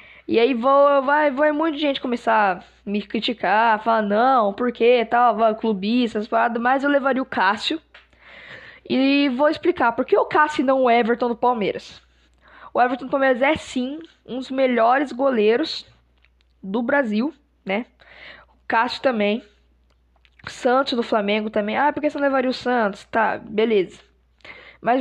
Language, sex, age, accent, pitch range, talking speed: Portuguese, female, 10-29, Brazilian, 220-275 Hz, 160 wpm